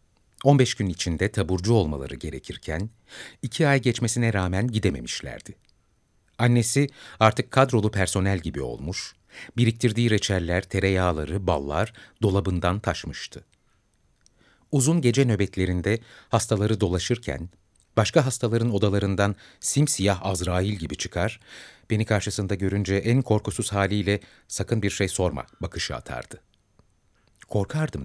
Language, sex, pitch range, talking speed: Turkish, male, 90-120 Hz, 105 wpm